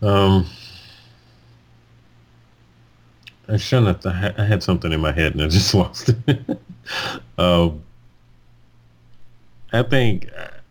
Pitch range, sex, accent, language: 75-105 Hz, male, American, English